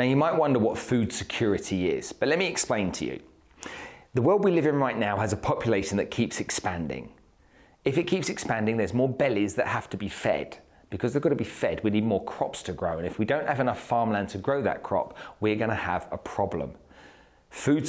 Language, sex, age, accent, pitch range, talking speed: English, male, 40-59, British, 100-135 Hz, 230 wpm